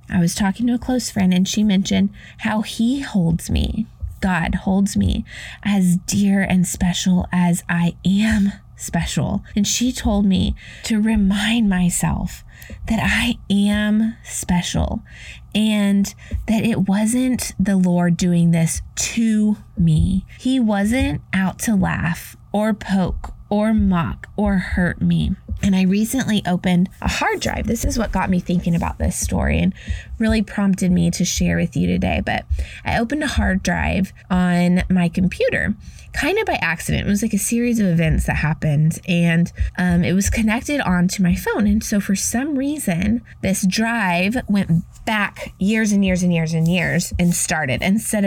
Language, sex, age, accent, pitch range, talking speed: English, female, 20-39, American, 175-215 Hz, 165 wpm